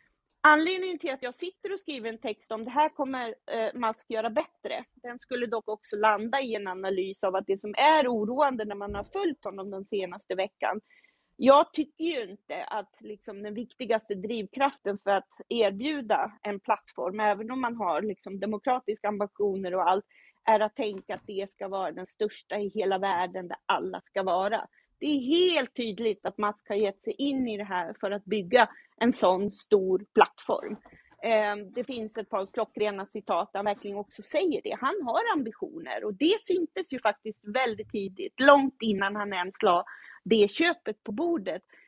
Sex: female